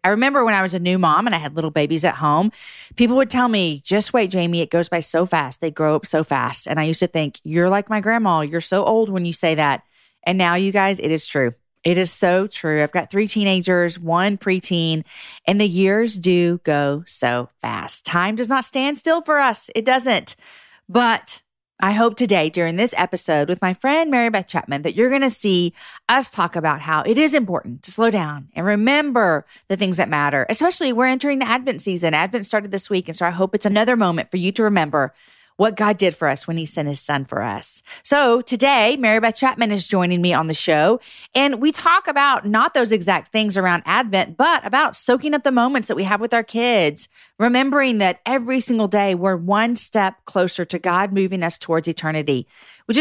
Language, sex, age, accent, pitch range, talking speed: English, female, 40-59, American, 170-230 Hz, 225 wpm